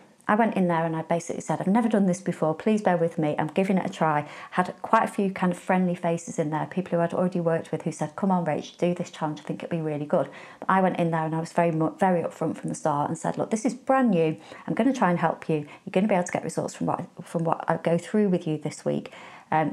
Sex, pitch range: female, 165-190 Hz